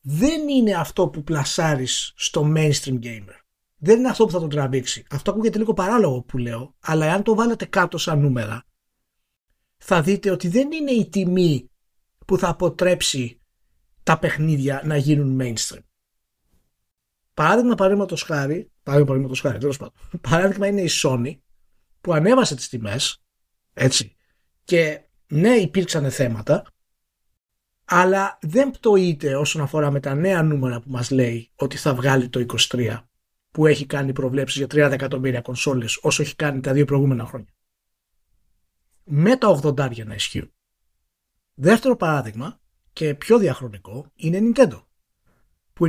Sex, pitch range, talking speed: male, 125-190 Hz, 145 wpm